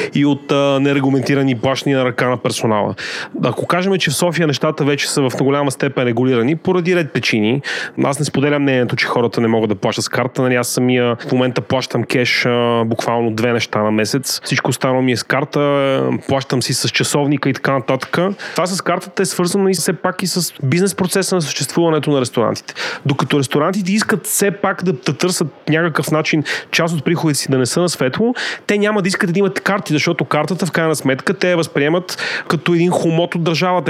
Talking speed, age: 205 wpm, 30-49